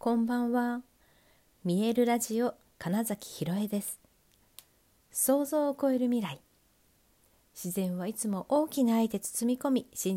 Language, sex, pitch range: Japanese, female, 165-235 Hz